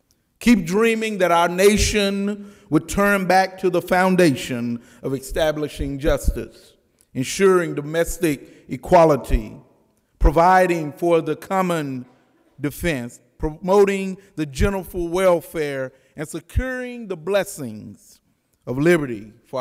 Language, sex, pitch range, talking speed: English, male, 120-165 Hz, 100 wpm